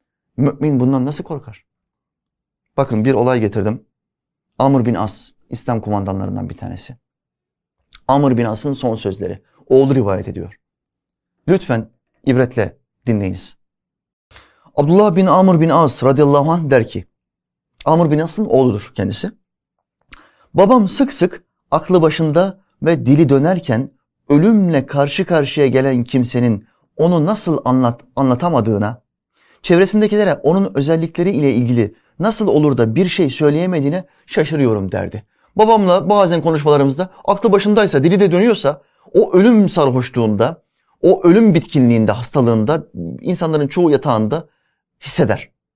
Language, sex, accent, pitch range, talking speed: Turkish, male, native, 115-170 Hz, 115 wpm